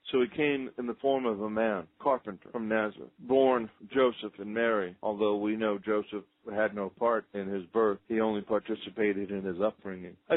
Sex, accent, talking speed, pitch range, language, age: male, American, 190 wpm, 105-135 Hz, English, 50-69